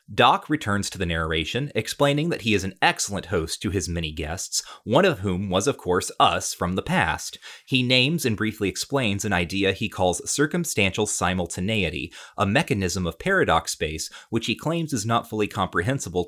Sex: male